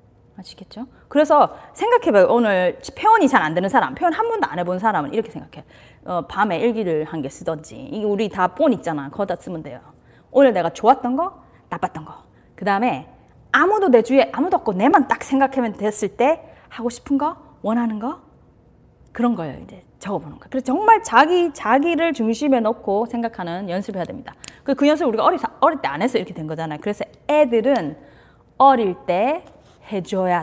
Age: 20-39